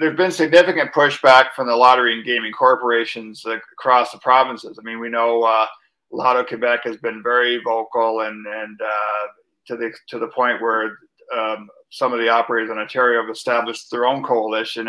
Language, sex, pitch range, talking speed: English, male, 115-130 Hz, 190 wpm